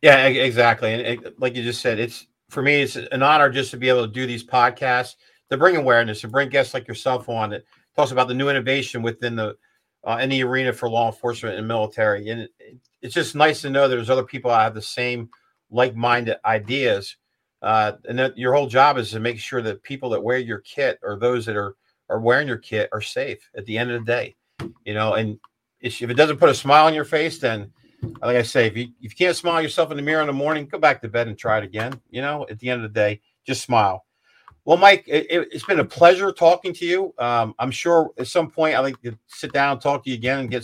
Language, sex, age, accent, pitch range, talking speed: English, male, 50-69, American, 115-145 Hz, 250 wpm